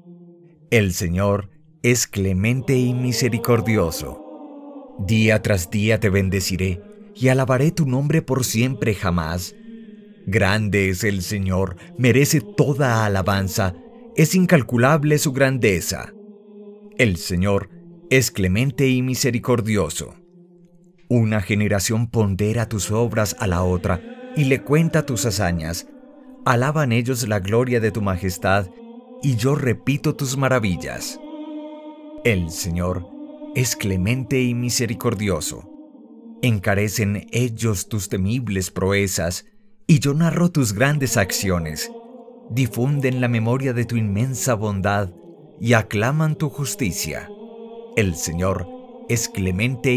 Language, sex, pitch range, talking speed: English, male, 105-160 Hz, 110 wpm